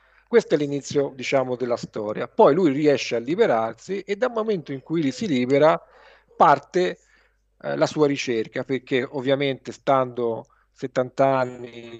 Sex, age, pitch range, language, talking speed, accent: male, 40-59, 125-155 Hz, Italian, 145 wpm, native